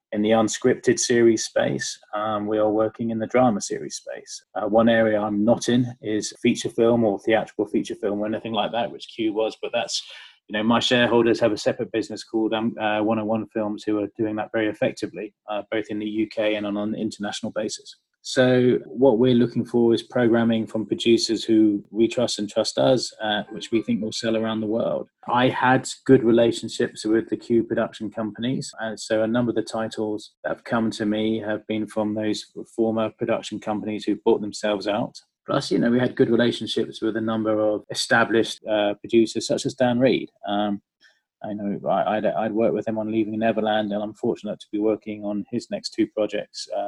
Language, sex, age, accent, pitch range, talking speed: English, male, 20-39, British, 105-115 Hz, 205 wpm